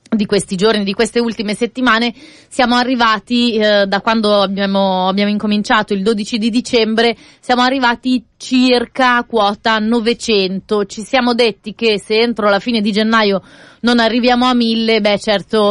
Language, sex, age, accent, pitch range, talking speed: Italian, female, 30-49, native, 200-235 Hz, 155 wpm